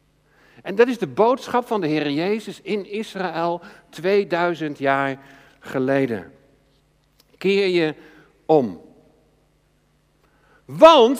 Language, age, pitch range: Dutch, 50-69, 155-230 Hz